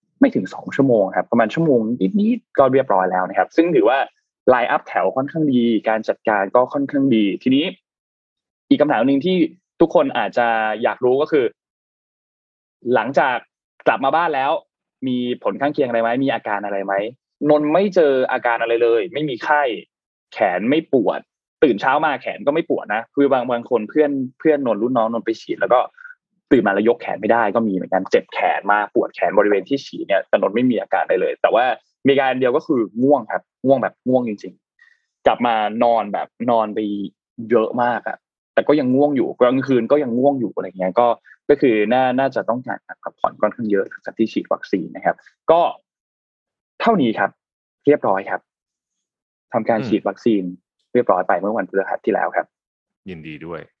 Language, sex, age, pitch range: Thai, male, 20-39, 110-150 Hz